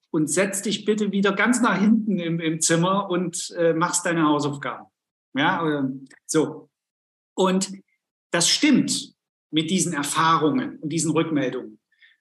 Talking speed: 140 wpm